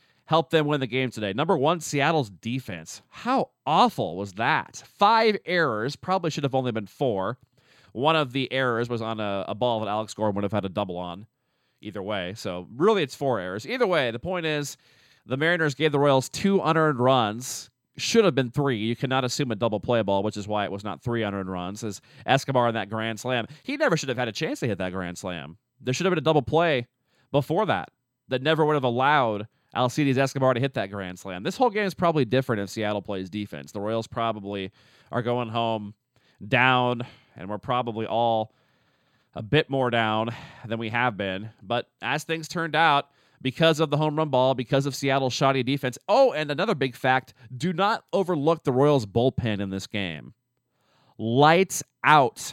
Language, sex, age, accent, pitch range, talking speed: English, male, 30-49, American, 110-155 Hz, 205 wpm